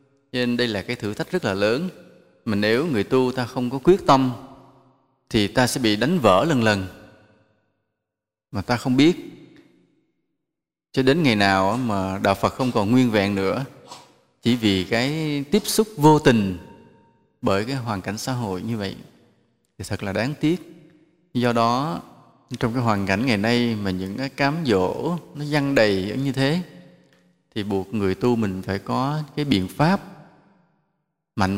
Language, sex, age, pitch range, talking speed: English, male, 20-39, 105-135 Hz, 175 wpm